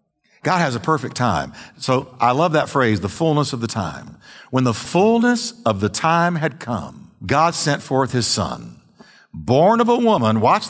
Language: English